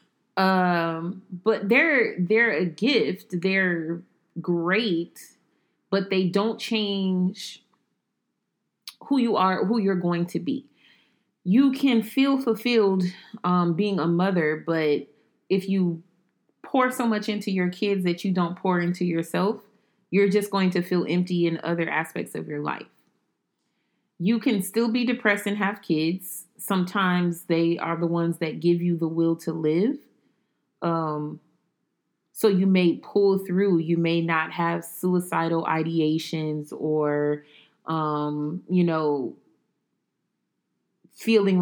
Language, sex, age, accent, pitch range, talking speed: English, female, 30-49, American, 165-200 Hz, 135 wpm